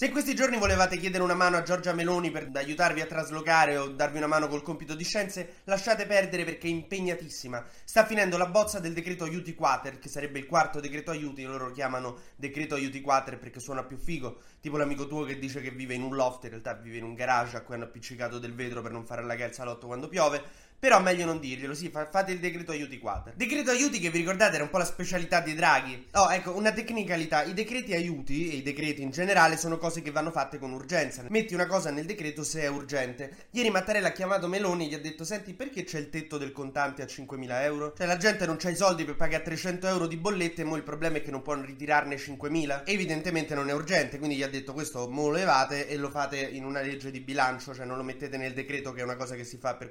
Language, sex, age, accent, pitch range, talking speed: Italian, male, 20-39, native, 135-180 Hz, 250 wpm